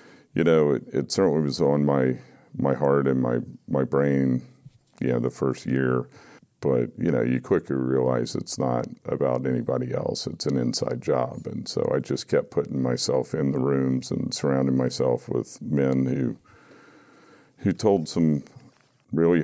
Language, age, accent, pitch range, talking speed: English, 50-69, American, 65-70 Hz, 165 wpm